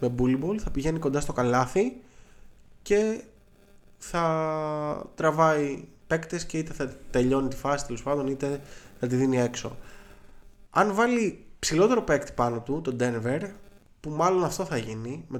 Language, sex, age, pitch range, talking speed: Greek, male, 20-39, 115-170 Hz, 145 wpm